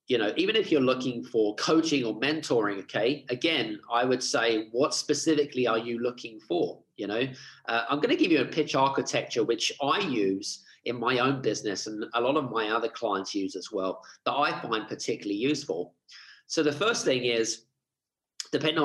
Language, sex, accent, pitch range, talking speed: English, male, British, 110-140 Hz, 190 wpm